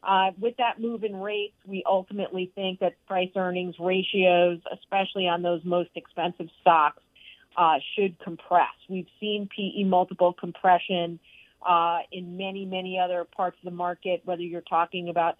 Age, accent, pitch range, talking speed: 50-69, American, 170-190 Hz, 155 wpm